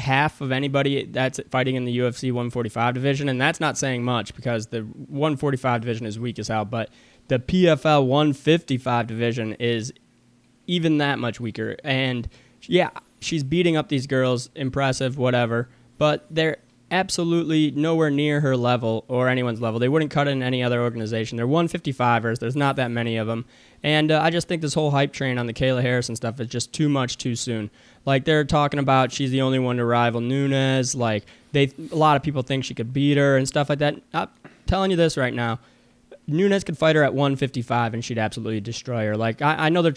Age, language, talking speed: 20-39, English, 205 wpm